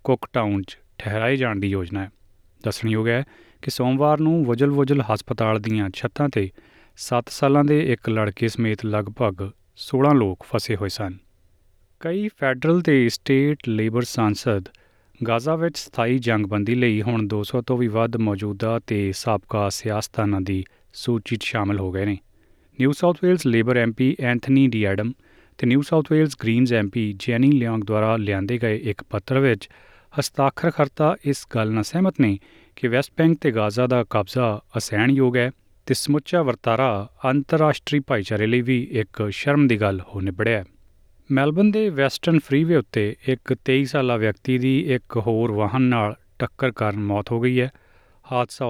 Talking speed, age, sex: 145 wpm, 30-49, male